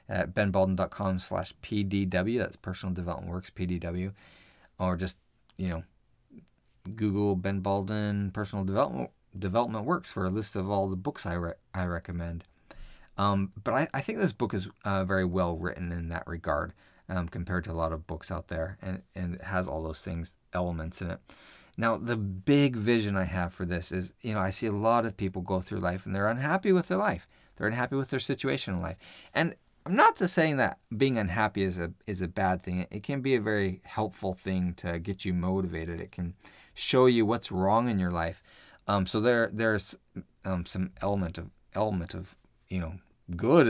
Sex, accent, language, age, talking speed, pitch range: male, American, English, 30-49, 200 wpm, 90-110 Hz